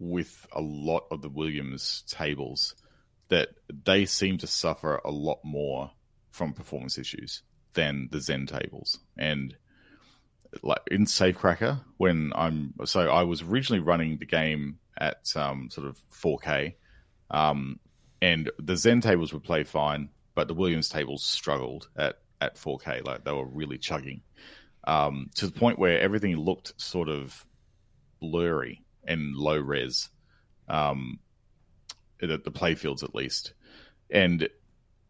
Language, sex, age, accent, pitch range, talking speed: English, male, 30-49, Australian, 75-85 Hz, 140 wpm